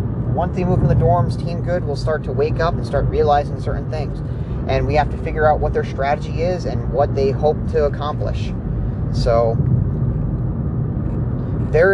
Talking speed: 180 wpm